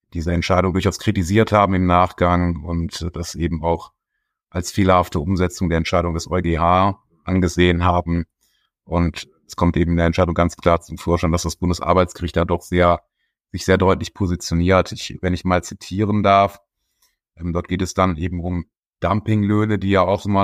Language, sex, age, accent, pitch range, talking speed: German, male, 30-49, German, 90-105 Hz, 170 wpm